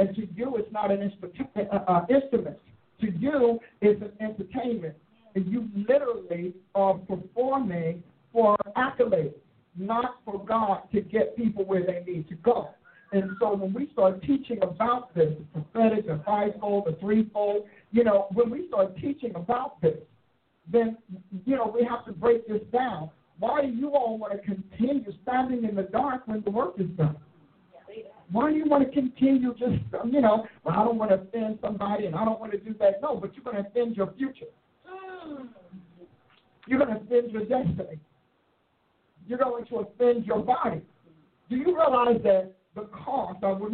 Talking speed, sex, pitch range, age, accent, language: 175 wpm, male, 185-240 Hz, 50-69, American, English